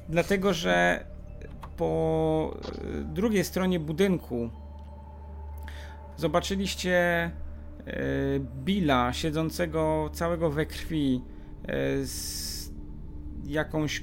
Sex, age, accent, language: male, 40-59, native, Polish